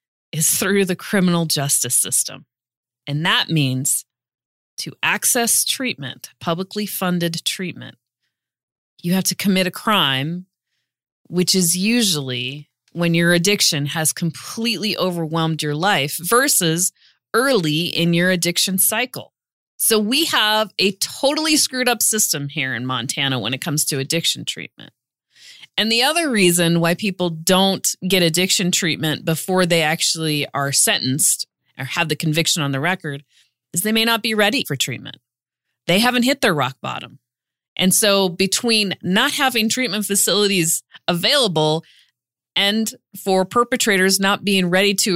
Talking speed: 140 wpm